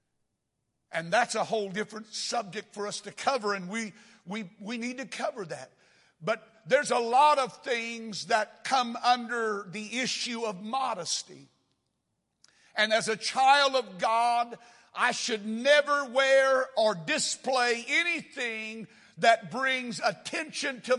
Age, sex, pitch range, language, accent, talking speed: 60-79, male, 215-260 Hz, English, American, 135 wpm